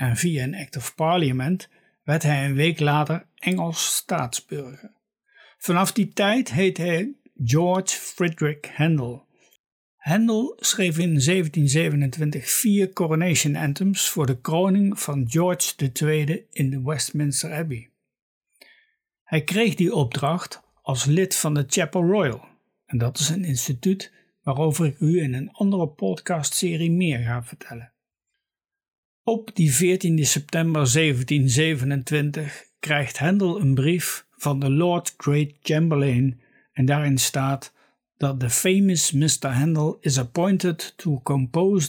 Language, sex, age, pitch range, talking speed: Dutch, male, 60-79, 140-180 Hz, 125 wpm